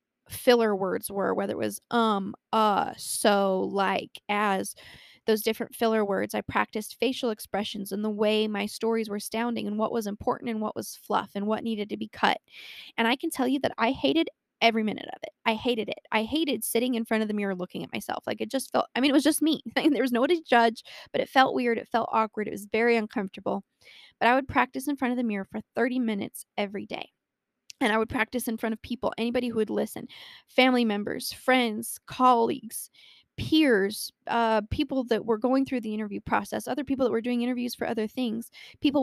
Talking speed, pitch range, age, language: 220 wpm, 215-255 Hz, 10-29, English